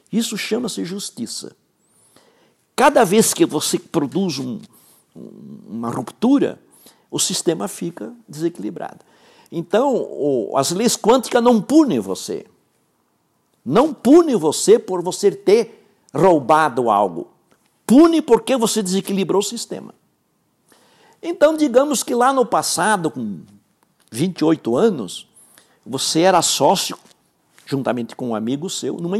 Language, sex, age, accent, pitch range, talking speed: Portuguese, male, 60-79, Brazilian, 180-240 Hz, 110 wpm